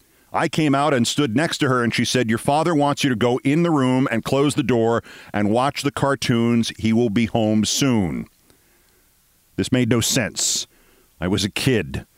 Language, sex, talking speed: English, male, 200 wpm